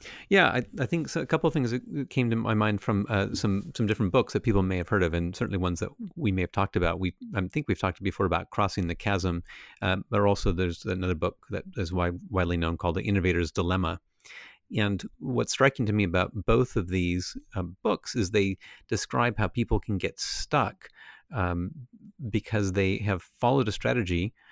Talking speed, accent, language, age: 210 wpm, American, English, 40-59